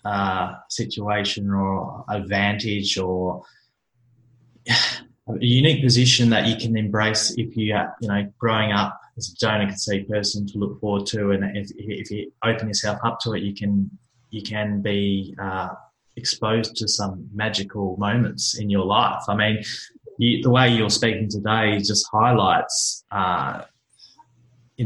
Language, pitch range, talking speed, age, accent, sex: English, 105-125 Hz, 150 wpm, 20-39, Australian, male